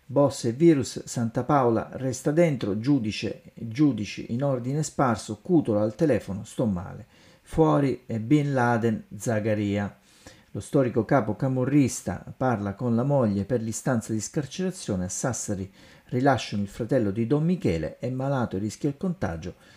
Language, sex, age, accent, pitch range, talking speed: Italian, male, 50-69, native, 105-140 Hz, 145 wpm